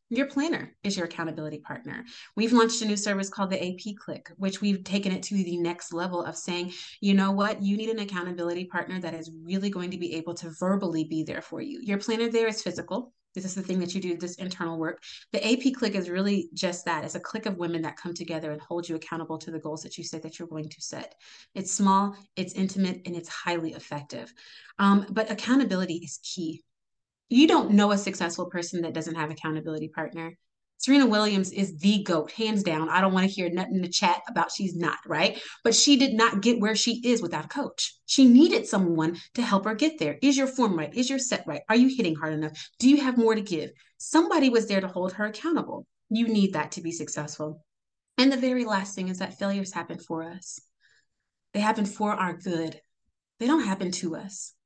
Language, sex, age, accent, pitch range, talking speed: English, female, 30-49, American, 165-215 Hz, 225 wpm